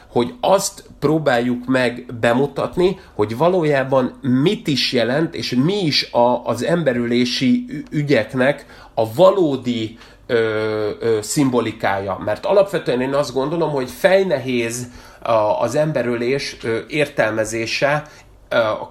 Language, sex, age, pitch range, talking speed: Hungarian, male, 30-49, 120-160 Hz, 95 wpm